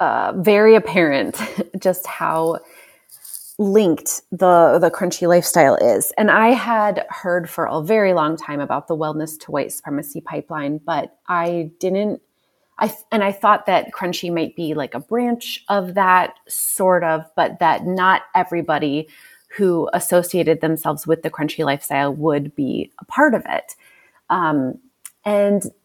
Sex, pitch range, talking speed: female, 155-200 Hz, 150 wpm